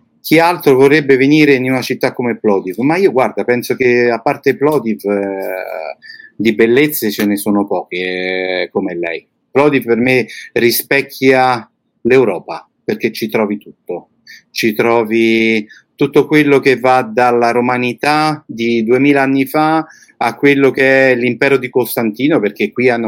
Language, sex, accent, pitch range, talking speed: Italian, male, native, 105-130 Hz, 150 wpm